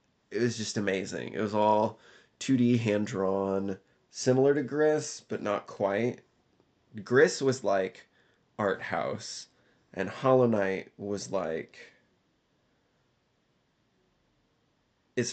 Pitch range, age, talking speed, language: 100-125 Hz, 20-39, 100 wpm, English